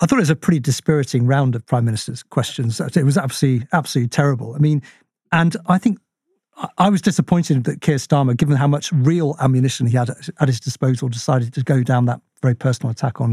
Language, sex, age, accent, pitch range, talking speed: English, male, 50-69, British, 120-150 Hz, 210 wpm